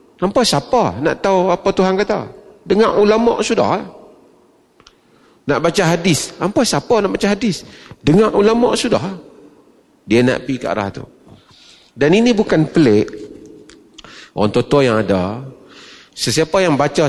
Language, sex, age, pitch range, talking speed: Malay, male, 40-59, 120-175 Hz, 135 wpm